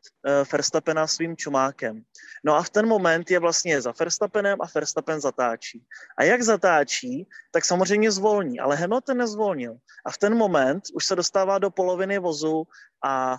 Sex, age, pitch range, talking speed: male, 30-49, 155-190 Hz, 160 wpm